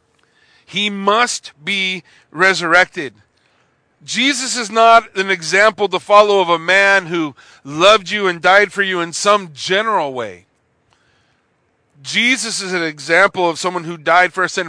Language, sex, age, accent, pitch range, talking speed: English, male, 40-59, American, 150-205 Hz, 145 wpm